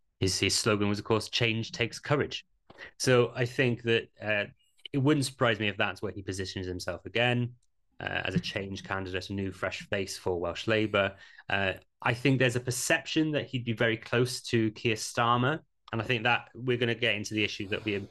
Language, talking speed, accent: English, 220 wpm, British